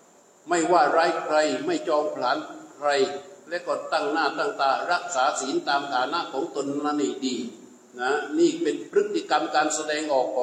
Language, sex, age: Thai, male, 60-79